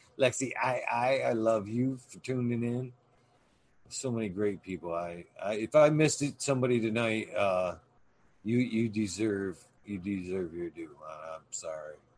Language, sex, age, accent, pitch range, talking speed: English, male, 40-59, American, 95-125 Hz, 155 wpm